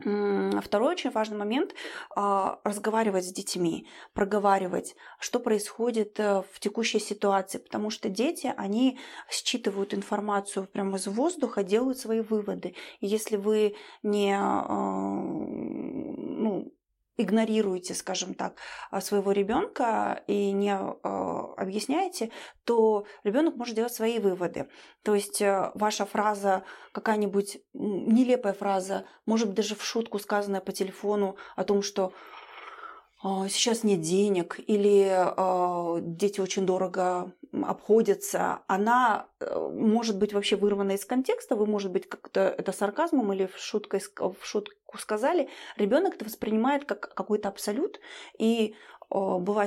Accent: native